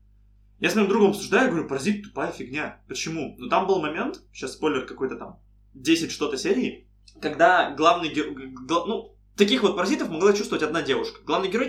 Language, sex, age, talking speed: Russian, male, 20-39, 180 wpm